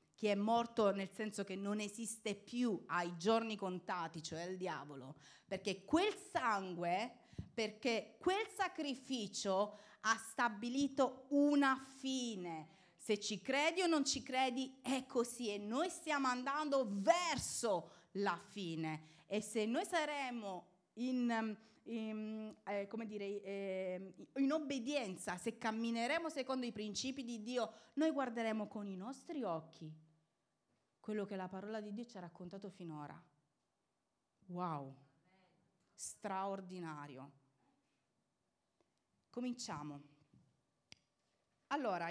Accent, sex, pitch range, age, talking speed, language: native, female, 185-265 Hz, 30-49, 105 wpm, Italian